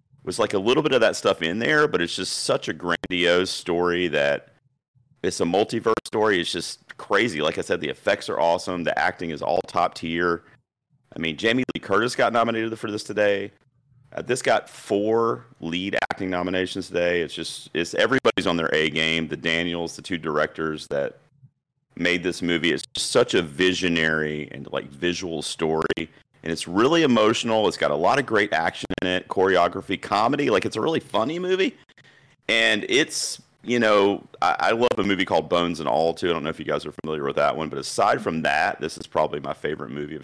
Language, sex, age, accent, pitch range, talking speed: English, male, 30-49, American, 80-105 Hz, 205 wpm